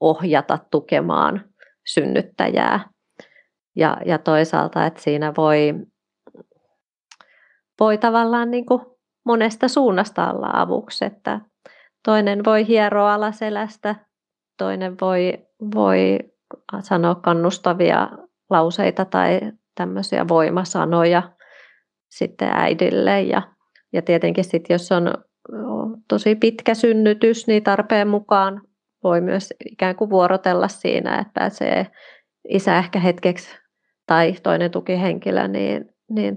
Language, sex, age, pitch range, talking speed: Finnish, female, 30-49, 175-220 Hz, 100 wpm